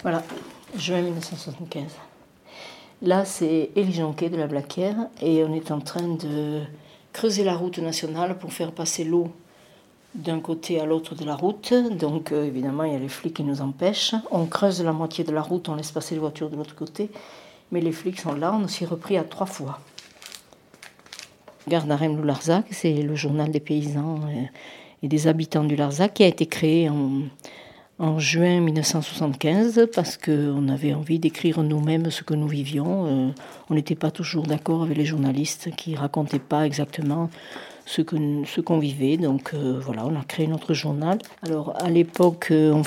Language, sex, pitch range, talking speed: French, female, 150-175 Hz, 180 wpm